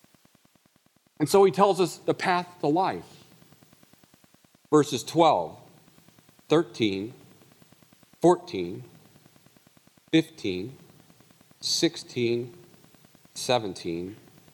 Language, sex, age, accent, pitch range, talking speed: English, male, 40-59, American, 95-150 Hz, 65 wpm